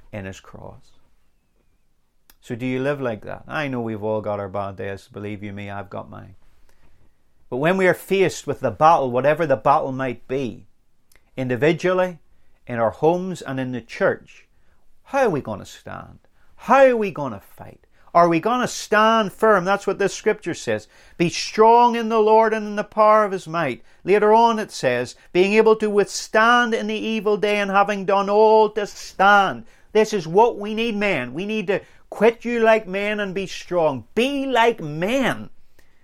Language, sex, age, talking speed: English, male, 40-59, 190 wpm